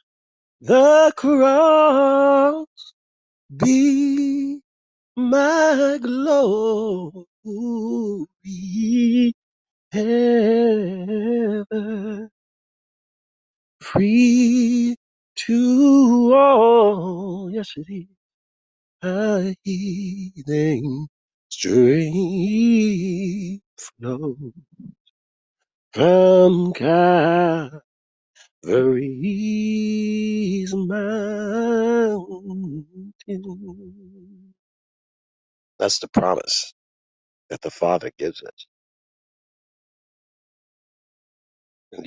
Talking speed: 40 wpm